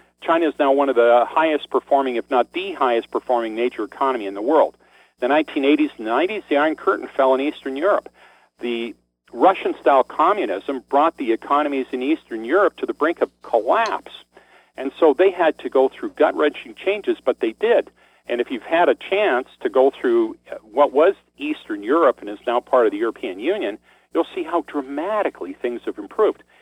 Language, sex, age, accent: English, male, 50-69, American